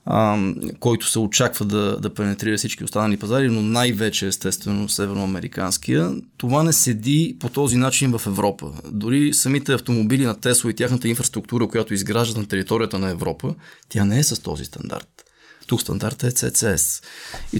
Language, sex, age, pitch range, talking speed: Bulgarian, male, 20-39, 105-130 Hz, 155 wpm